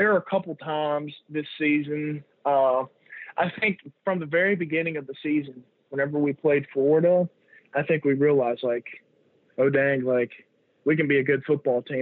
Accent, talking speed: American, 185 wpm